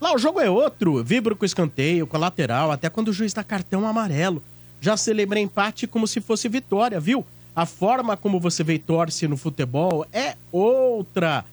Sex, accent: male, Brazilian